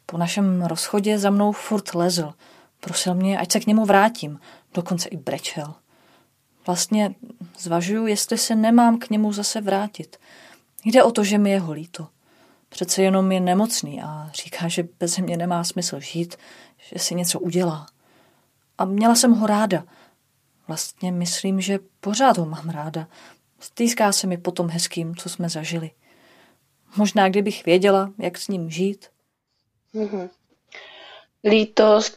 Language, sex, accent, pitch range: Czech, female, native, 180-215 Hz